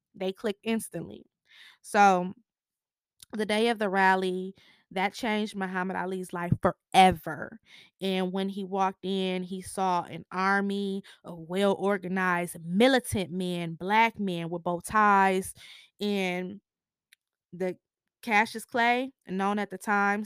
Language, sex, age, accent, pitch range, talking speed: English, female, 20-39, American, 185-210 Hz, 125 wpm